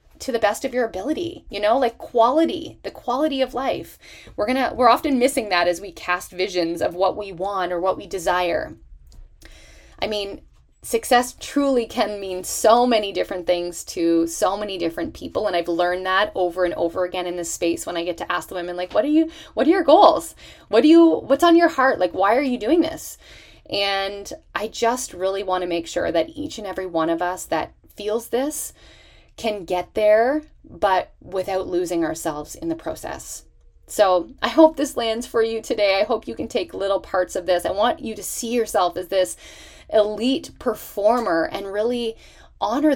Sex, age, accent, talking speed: female, 20-39, American, 205 wpm